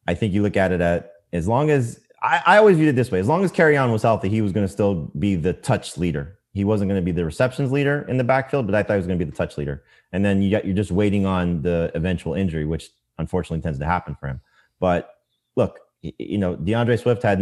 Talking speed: 270 wpm